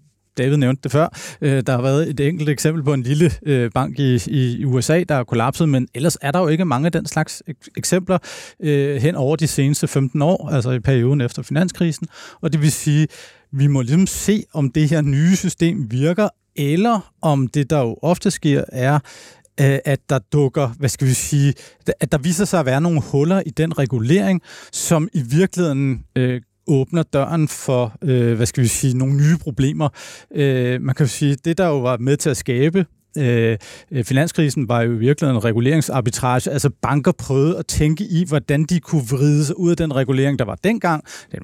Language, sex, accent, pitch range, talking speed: Danish, male, native, 130-165 Hz, 190 wpm